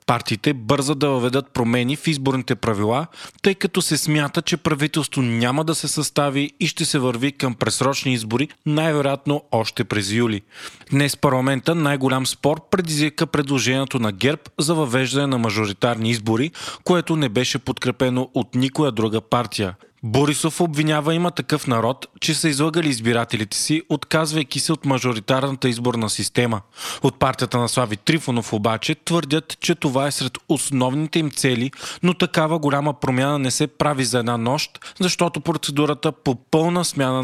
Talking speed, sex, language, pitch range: 155 wpm, male, Bulgarian, 125-155 Hz